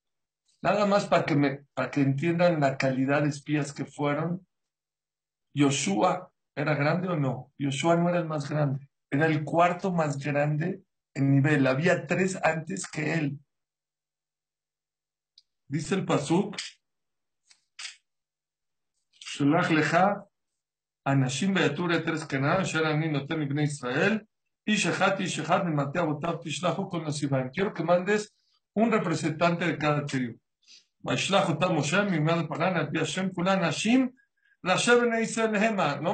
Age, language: 50-69, English